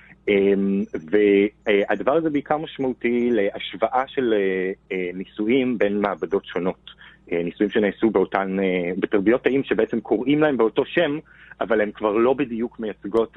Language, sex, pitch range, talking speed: Hebrew, male, 100-130 Hz, 115 wpm